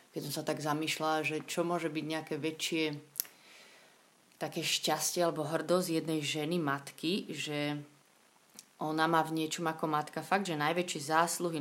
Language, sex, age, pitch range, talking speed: Slovak, female, 30-49, 150-165 Hz, 150 wpm